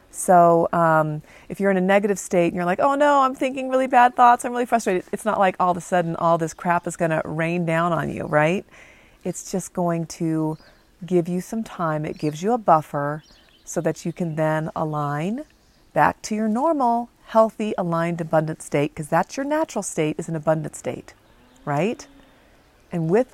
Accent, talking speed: American, 200 wpm